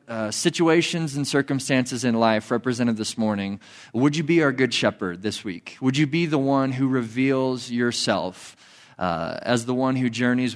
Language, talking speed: English, 170 wpm